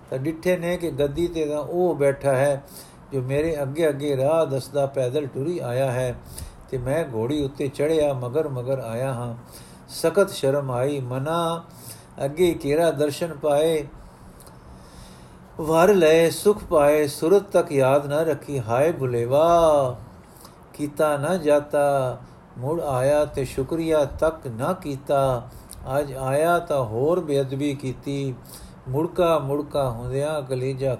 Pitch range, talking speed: 130-165 Hz, 130 wpm